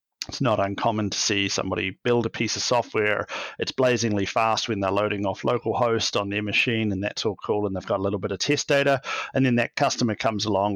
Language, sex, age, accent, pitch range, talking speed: English, male, 30-49, Australian, 100-125 Hz, 235 wpm